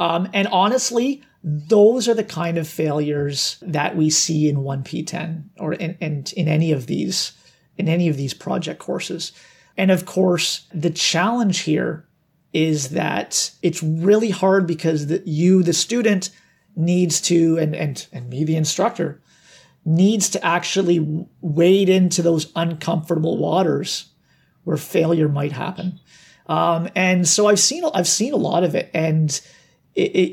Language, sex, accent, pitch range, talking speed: English, male, American, 155-185 Hz, 150 wpm